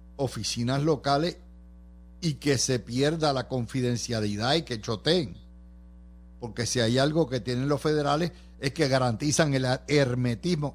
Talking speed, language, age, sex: 135 wpm, Spanish, 60-79, male